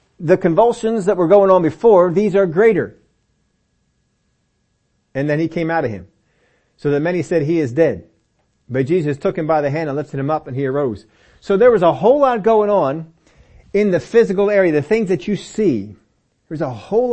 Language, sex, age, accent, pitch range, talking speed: English, male, 40-59, American, 125-190 Hz, 205 wpm